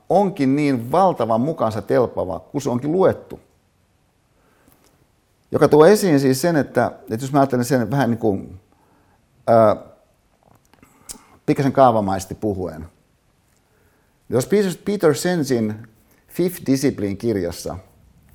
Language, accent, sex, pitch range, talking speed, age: Finnish, native, male, 95-130 Hz, 110 wpm, 50-69